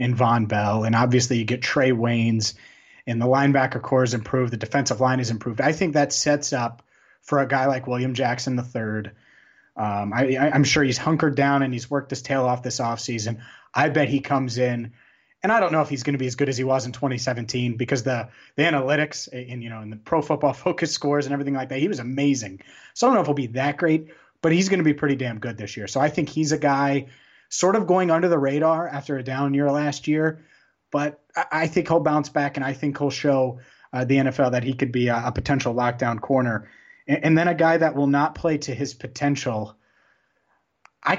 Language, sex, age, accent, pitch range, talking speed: English, male, 30-49, American, 125-145 Hz, 235 wpm